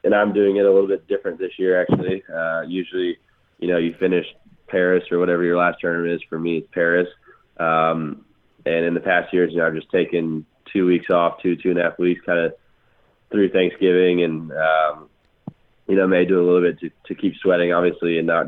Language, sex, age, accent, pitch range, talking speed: English, male, 20-39, American, 80-90 Hz, 220 wpm